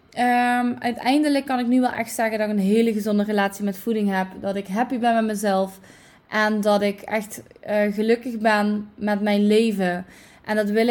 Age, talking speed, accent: 20-39, 200 wpm, Dutch